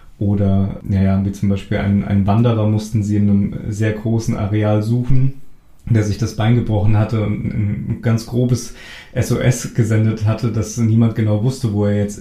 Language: German